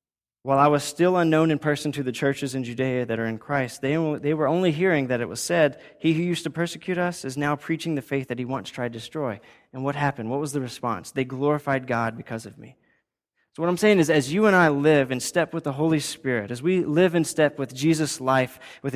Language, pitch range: English, 130-155 Hz